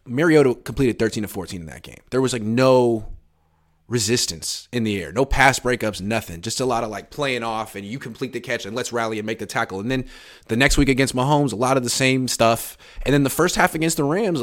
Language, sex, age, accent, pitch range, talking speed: English, male, 30-49, American, 100-130 Hz, 245 wpm